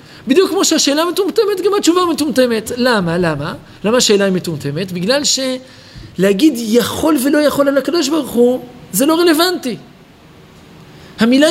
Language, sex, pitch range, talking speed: Hebrew, male, 200-270 Hz, 135 wpm